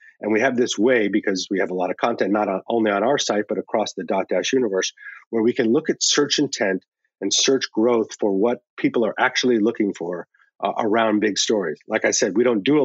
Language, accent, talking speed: English, American, 245 wpm